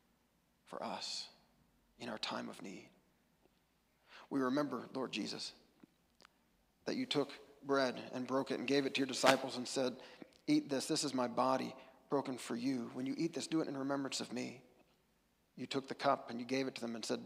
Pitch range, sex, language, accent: 125-140 Hz, male, English, American